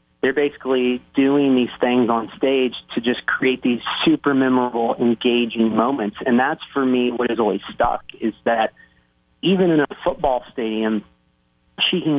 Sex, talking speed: male, 160 wpm